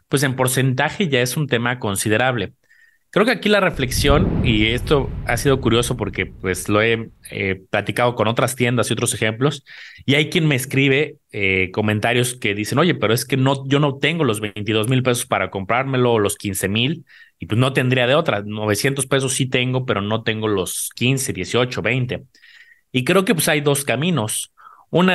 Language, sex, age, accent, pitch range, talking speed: Spanish, male, 30-49, Mexican, 110-140 Hz, 190 wpm